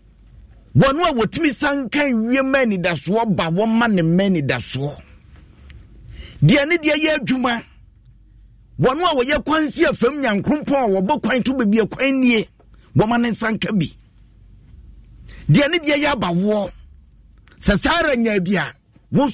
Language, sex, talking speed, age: English, male, 120 wpm, 50-69